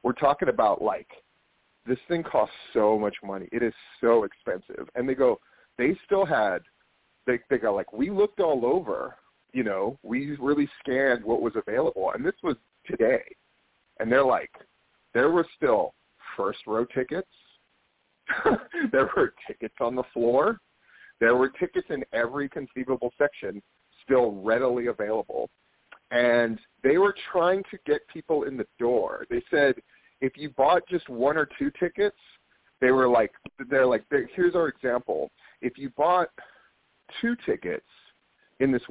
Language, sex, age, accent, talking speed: English, male, 40-59, American, 155 wpm